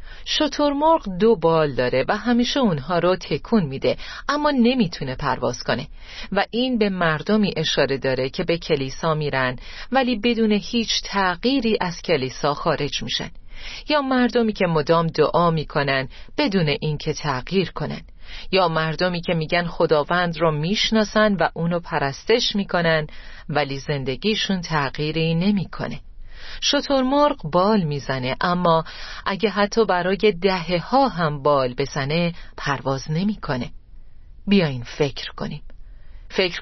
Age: 40-59